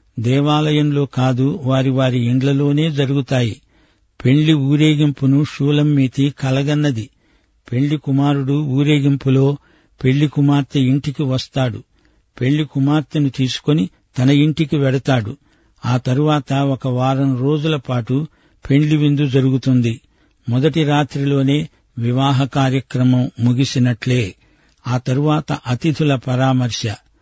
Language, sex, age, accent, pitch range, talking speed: Telugu, male, 60-79, native, 130-145 Hz, 90 wpm